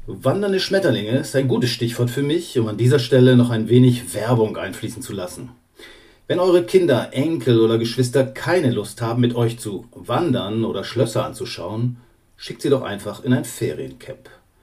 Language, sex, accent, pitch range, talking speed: German, male, German, 115-130 Hz, 170 wpm